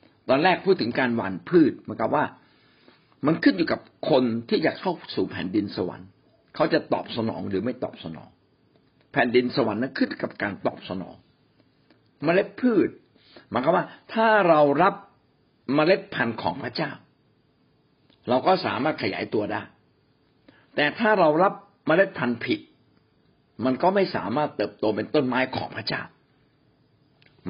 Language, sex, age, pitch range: Thai, male, 60-79, 120-180 Hz